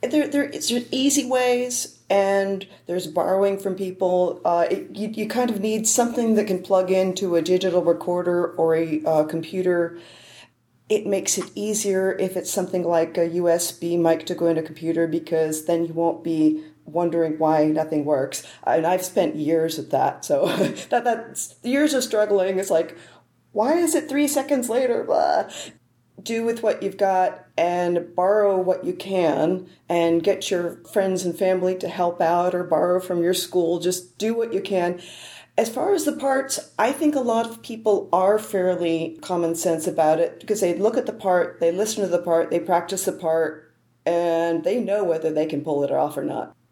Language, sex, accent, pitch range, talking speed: English, female, American, 165-200 Hz, 190 wpm